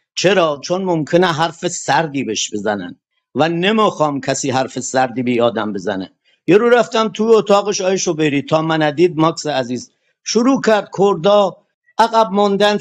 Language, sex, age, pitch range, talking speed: Persian, male, 50-69, 165-210 Hz, 140 wpm